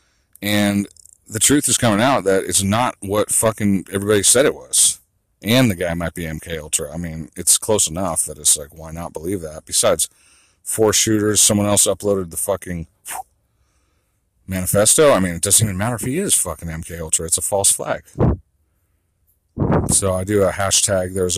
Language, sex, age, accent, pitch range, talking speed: English, male, 40-59, American, 85-105 Hz, 180 wpm